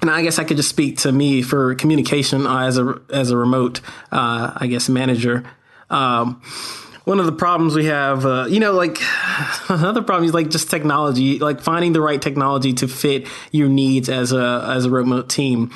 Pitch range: 125-155 Hz